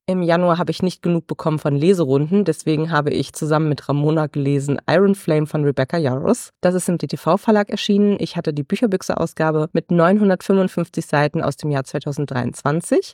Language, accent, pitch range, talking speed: German, German, 145-180 Hz, 170 wpm